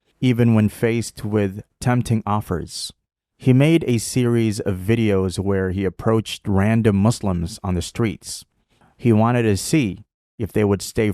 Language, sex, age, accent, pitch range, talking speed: English, male, 30-49, American, 100-125 Hz, 150 wpm